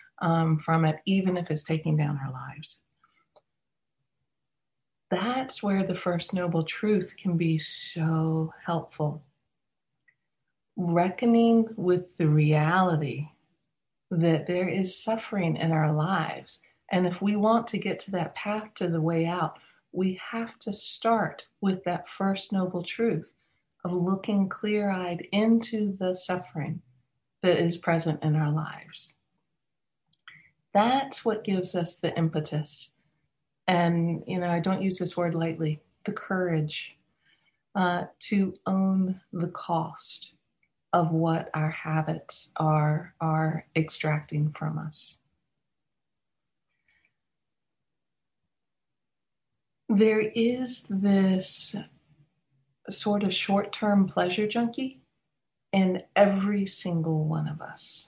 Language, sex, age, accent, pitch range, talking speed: English, female, 40-59, American, 160-195 Hz, 115 wpm